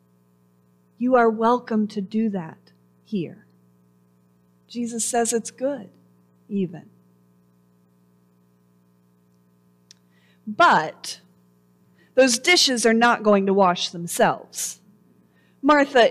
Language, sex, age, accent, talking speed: English, female, 40-59, American, 80 wpm